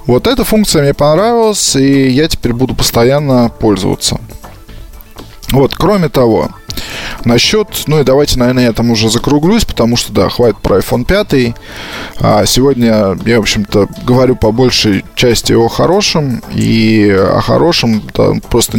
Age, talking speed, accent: 20-39, 140 wpm, native